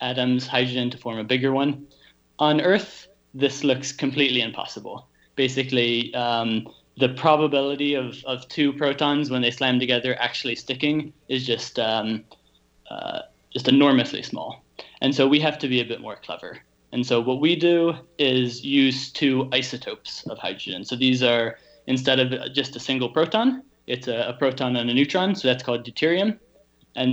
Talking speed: 170 wpm